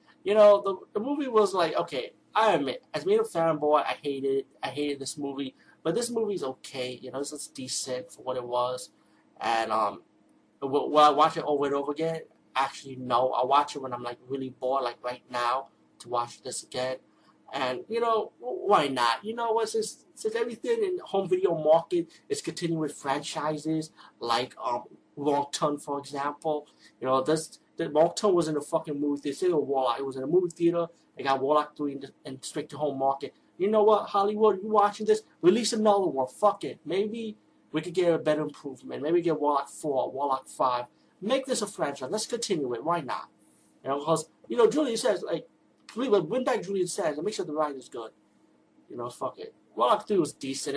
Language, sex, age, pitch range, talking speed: English, male, 30-49, 135-205 Hz, 205 wpm